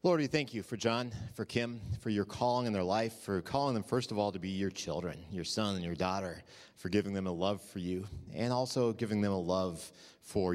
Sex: male